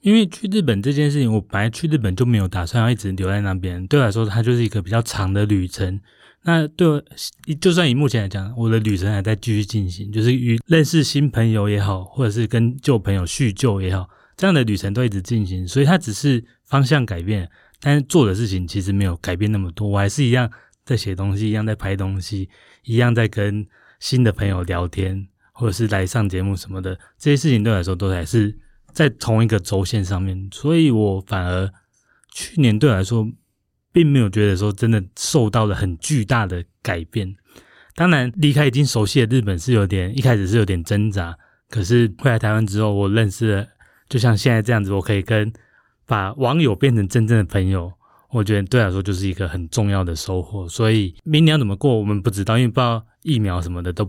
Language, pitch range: Chinese, 95-125 Hz